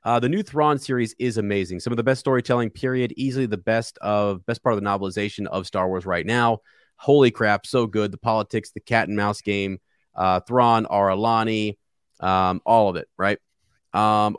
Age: 30-49